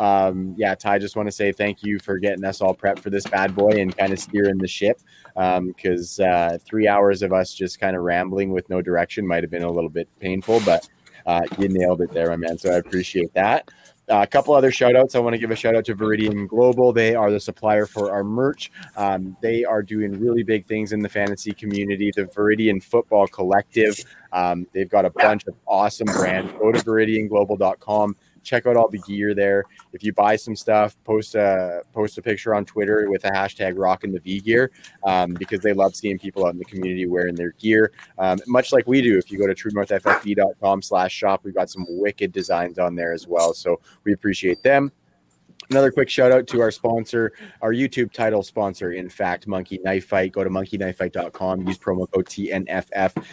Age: 20-39